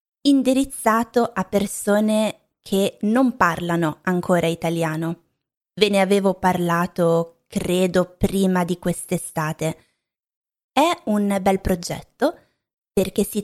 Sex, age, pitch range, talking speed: female, 20-39, 175-210 Hz, 100 wpm